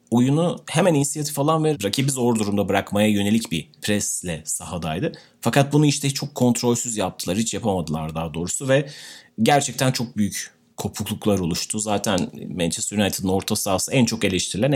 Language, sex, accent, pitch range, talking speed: Turkish, male, native, 100-135 Hz, 150 wpm